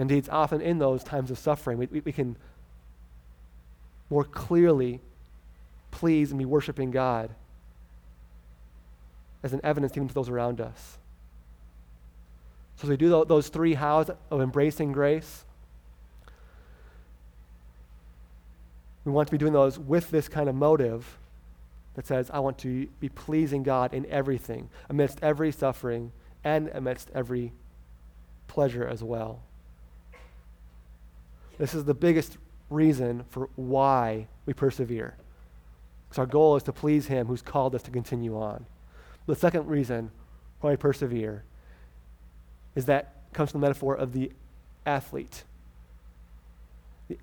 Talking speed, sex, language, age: 135 wpm, male, English, 30-49